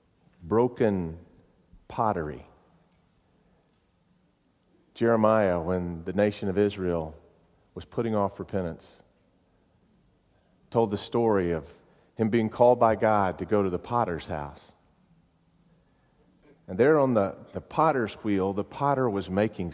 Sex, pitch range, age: male, 95-130 Hz, 40-59